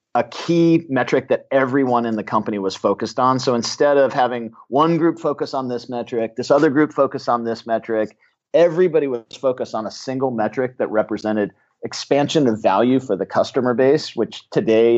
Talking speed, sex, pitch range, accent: 185 wpm, male, 110-140 Hz, American